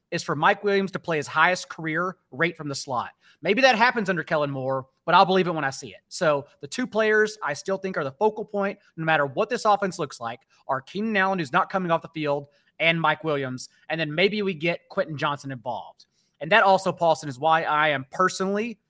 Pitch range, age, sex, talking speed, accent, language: 145-195 Hz, 30-49, male, 235 wpm, American, English